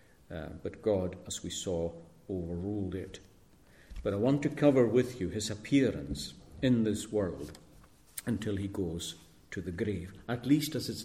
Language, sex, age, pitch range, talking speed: English, male, 50-69, 90-115 Hz, 165 wpm